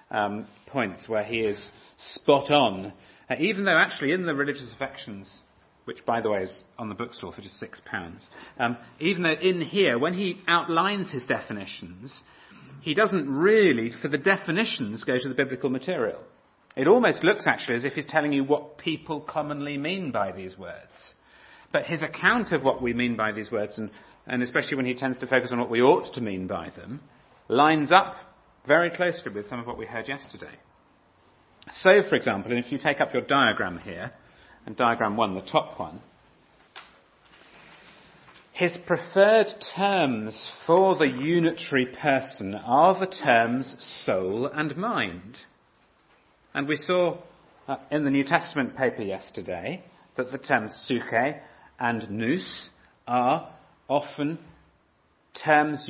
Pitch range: 120-165 Hz